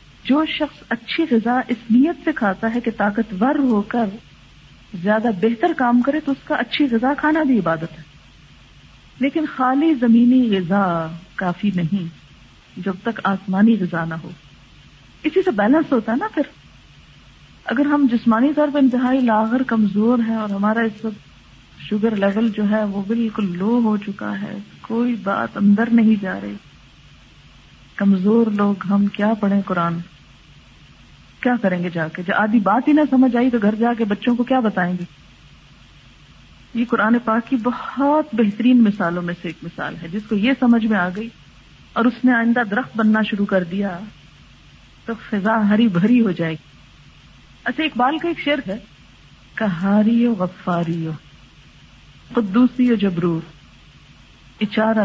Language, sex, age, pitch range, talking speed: Urdu, female, 50-69, 195-245 Hz, 165 wpm